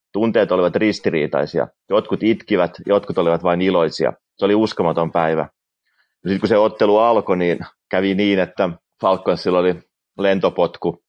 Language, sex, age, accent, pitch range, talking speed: Finnish, male, 30-49, native, 85-95 Hz, 135 wpm